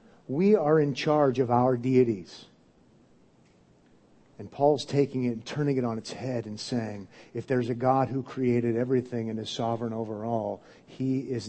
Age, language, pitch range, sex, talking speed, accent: 50-69, English, 115-140 Hz, male, 170 wpm, American